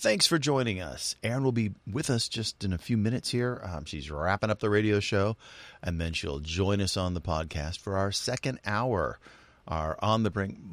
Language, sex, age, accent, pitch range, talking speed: English, male, 40-59, American, 80-105 Hz, 215 wpm